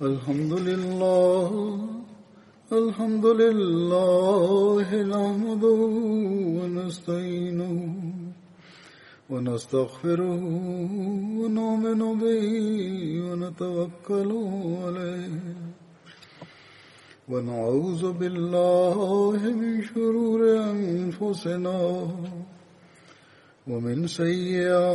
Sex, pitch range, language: male, 175-205 Hz, Russian